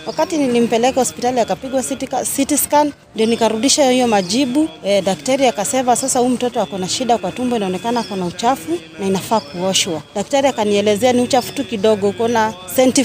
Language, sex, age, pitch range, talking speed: Swahili, female, 30-49, 200-265 Hz, 155 wpm